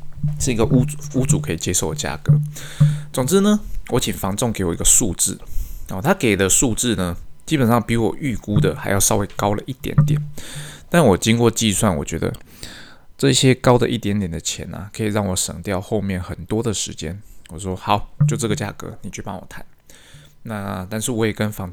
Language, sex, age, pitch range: Chinese, male, 20-39, 95-130 Hz